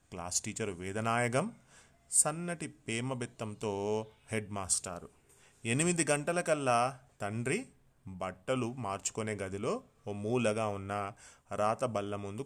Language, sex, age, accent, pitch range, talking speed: Telugu, male, 30-49, native, 100-130 Hz, 85 wpm